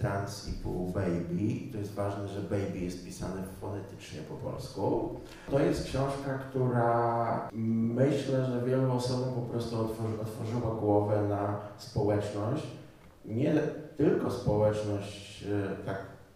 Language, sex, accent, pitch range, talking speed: Polish, male, native, 105-130 Hz, 115 wpm